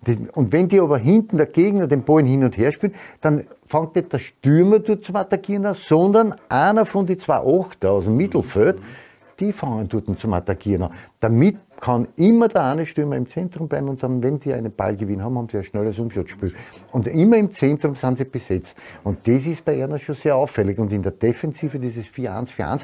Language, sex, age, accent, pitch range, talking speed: German, male, 50-69, Austrian, 115-160 Hz, 205 wpm